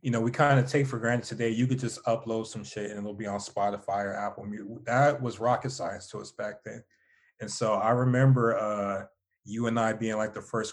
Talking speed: 240 wpm